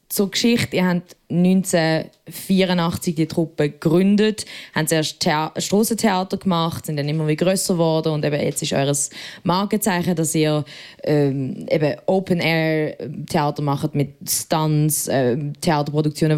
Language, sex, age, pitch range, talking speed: German, female, 20-39, 155-190 Hz, 130 wpm